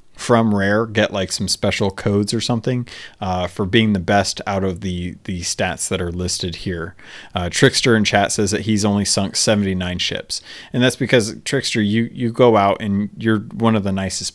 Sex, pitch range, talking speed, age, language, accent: male, 95-120 Hz, 200 wpm, 30-49, English, American